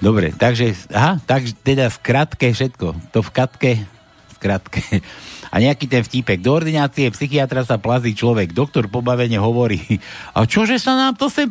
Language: Slovak